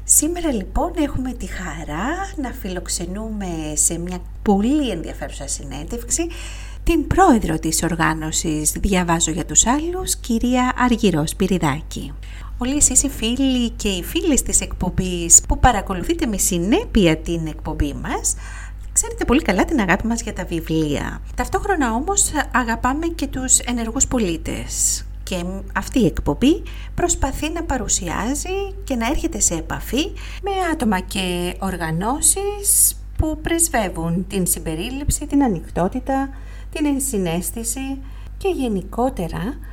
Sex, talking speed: female, 120 wpm